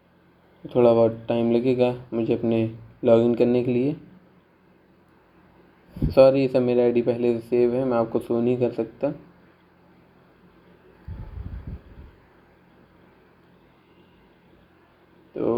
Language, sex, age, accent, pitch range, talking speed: Hindi, male, 20-39, native, 115-130 Hz, 100 wpm